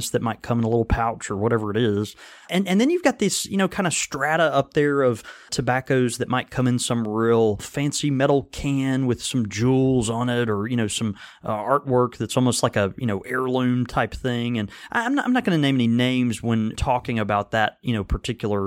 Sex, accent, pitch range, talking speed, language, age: male, American, 115-150 Hz, 235 wpm, English, 30-49